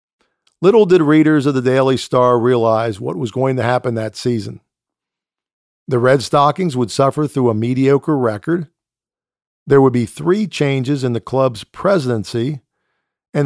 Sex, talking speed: male, 150 wpm